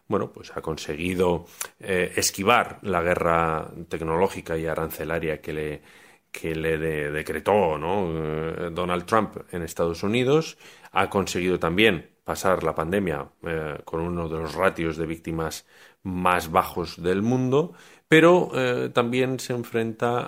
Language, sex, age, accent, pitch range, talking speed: Spanish, male, 30-49, Spanish, 80-110 Hz, 135 wpm